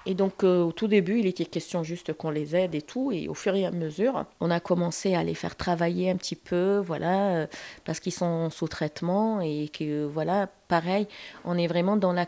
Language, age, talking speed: French, 30-49, 235 wpm